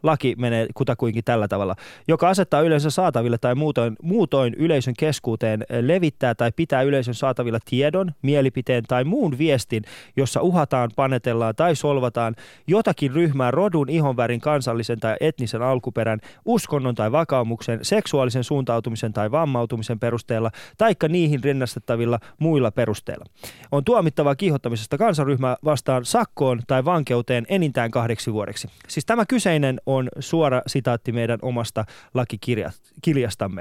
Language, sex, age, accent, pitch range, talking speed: Finnish, male, 20-39, native, 120-155 Hz, 125 wpm